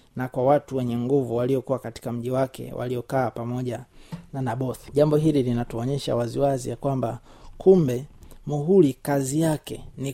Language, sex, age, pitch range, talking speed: Swahili, male, 30-49, 125-150 Hz, 155 wpm